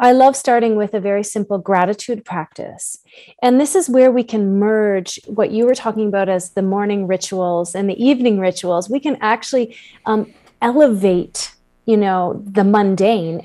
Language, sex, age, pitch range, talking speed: English, female, 30-49, 195-245 Hz, 170 wpm